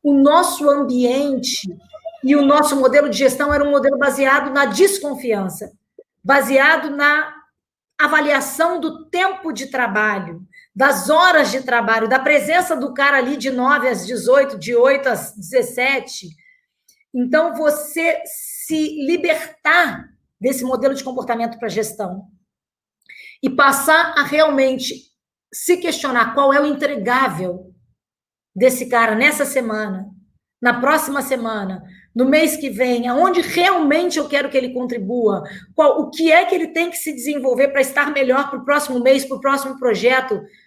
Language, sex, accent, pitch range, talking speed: Portuguese, female, Brazilian, 245-295 Hz, 145 wpm